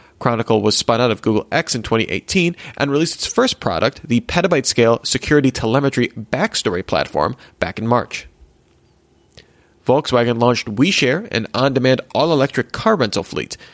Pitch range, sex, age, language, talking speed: 110-145 Hz, male, 40-59, English, 140 wpm